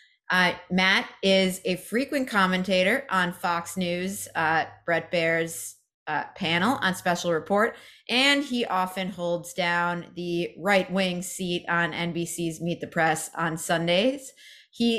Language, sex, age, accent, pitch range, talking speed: English, female, 30-49, American, 175-215 Hz, 135 wpm